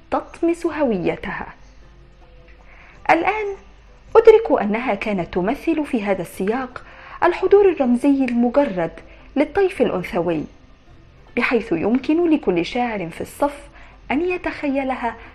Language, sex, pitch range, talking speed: Arabic, female, 205-305 Hz, 90 wpm